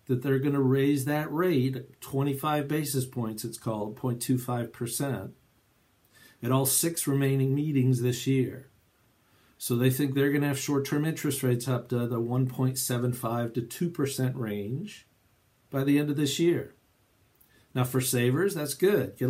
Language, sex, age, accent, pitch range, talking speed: English, male, 50-69, American, 120-140 Hz, 150 wpm